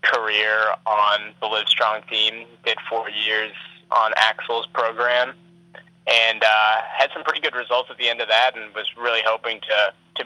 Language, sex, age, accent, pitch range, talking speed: English, male, 20-39, American, 105-120 Hz, 170 wpm